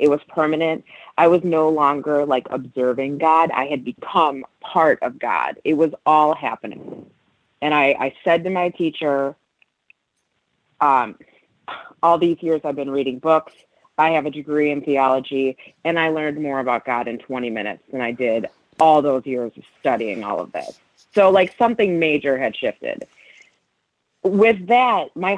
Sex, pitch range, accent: female, 135-170 Hz, American